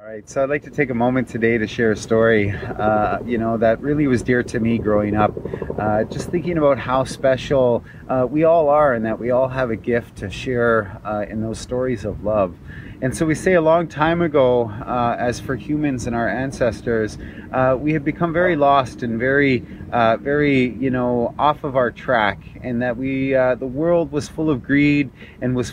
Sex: male